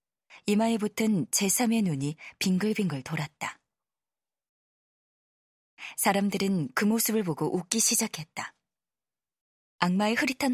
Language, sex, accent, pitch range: Korean, female, native, 160-220 Hz